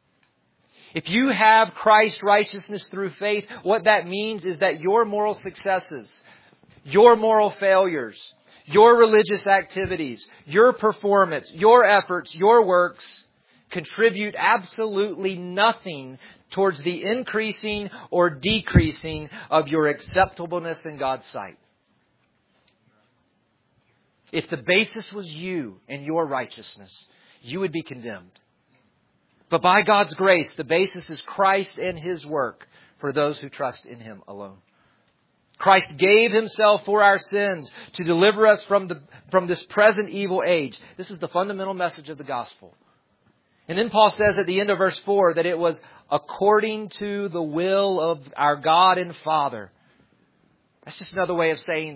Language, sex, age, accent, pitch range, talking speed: English, male, 40-59, American, 155-205 Hz, 140 wpm